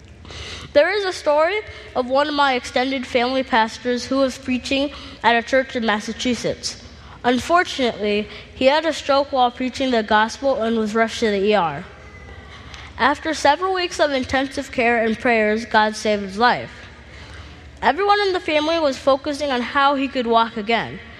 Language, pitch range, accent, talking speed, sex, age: English, 230-280 Hz, American, 165 wpm, female, 20-39